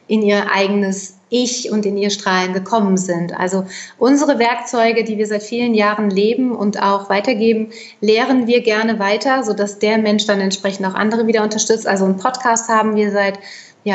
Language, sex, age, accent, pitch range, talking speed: German, female, 30-49, German, 205-235 Hz, 180 wpm